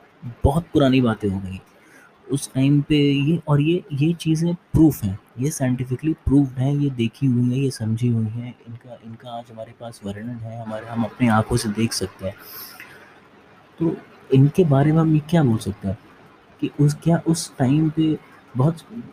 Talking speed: 185 wpm